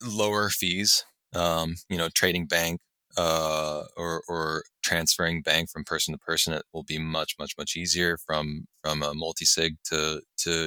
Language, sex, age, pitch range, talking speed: English, male, 20-39, 75-90 Hz, 165 wpm